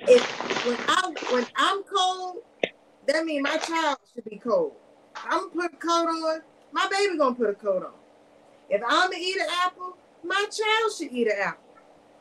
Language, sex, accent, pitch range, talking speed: English, female, American, 225-320 Hz, 200 wpm